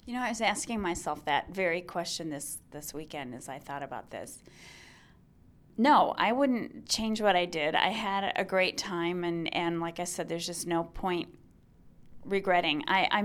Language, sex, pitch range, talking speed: English, female, 165-200 Hz, 185 wpm